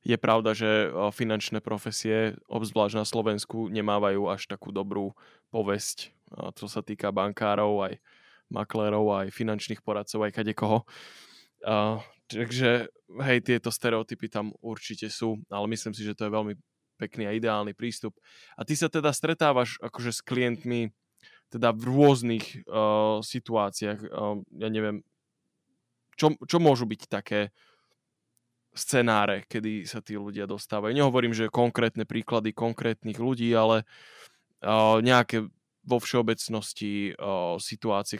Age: 10-29